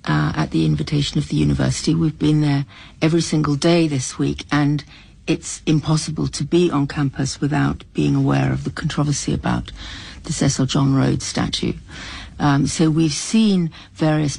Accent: British